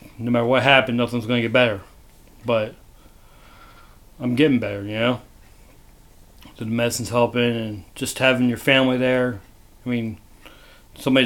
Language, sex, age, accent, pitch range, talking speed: English, male, 40-59, American, 110-130 Hz, 150 wpm